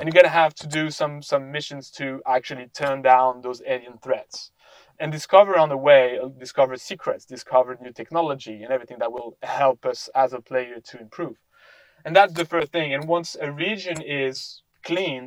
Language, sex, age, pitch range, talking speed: English, male, 30-49, 130-165 Hz, 195 wpm